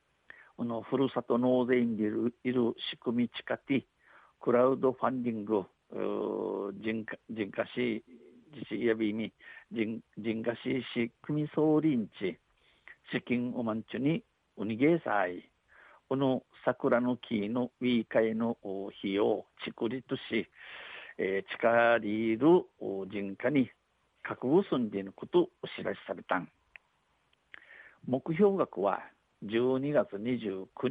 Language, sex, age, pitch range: Japanese, male, 60-79, 110-130 Hz